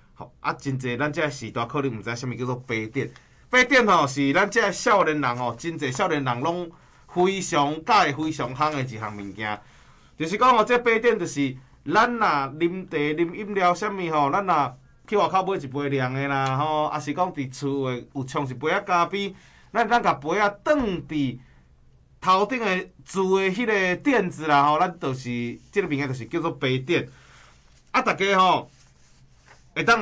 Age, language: 30-49, Chinese